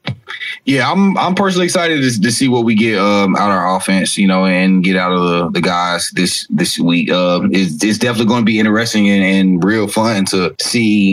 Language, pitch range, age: English, 100-115 Hz, 30-49